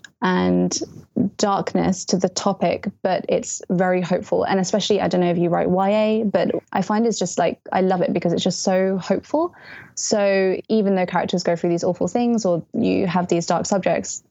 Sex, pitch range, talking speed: female, 180-205 Hz, 195 wpm